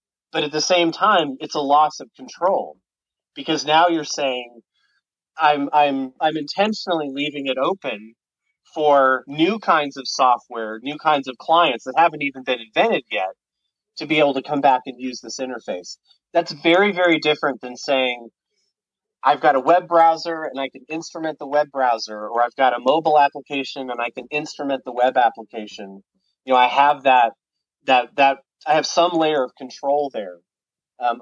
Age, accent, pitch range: 30-49, American, 125-155 Hz